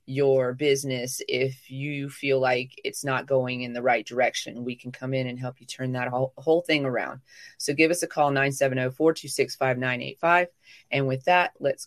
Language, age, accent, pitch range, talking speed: English, 30-49, American, 125-145 Hz, 175 wpm